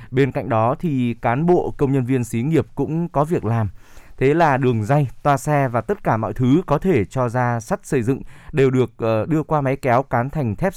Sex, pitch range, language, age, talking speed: male, 120-155 Hz, Vietnamese, 20-39, 235 wpm